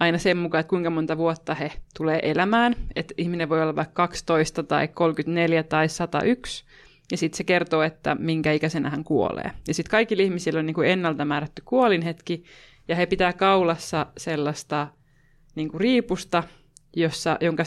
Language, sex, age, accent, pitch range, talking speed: Finnish, female, 20-39, native, 150-175 Hz, 160 wpm